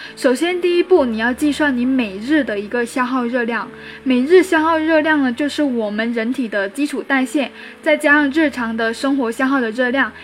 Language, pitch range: Chinese, 240-290 Hz